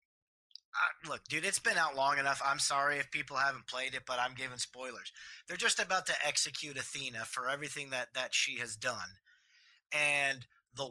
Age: 30-49